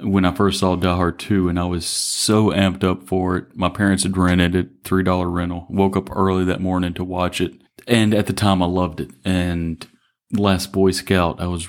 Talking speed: 225 wpm